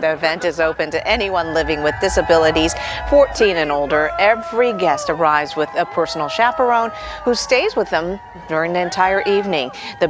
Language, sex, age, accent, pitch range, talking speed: English, female, 50-69, American, 160-235 Hz, 165 wpm